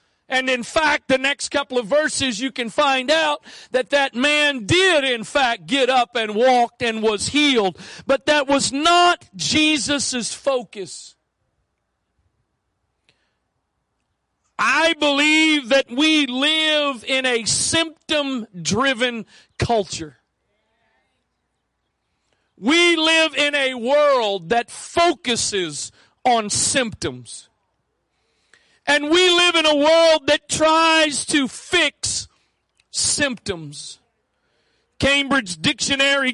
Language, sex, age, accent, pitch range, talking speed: English, male, 50-69, American, 220-300 Hz, 100 wpm